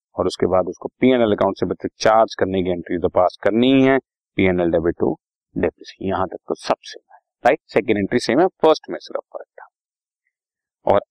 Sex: male